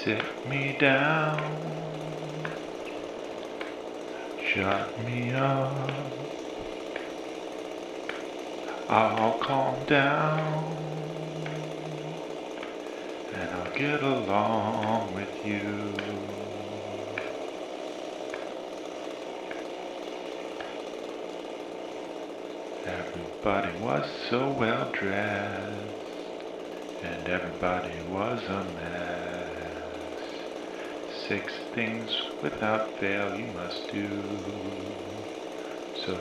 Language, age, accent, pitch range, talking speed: English, 40-59, American, 100-135 Hz, 55 wpm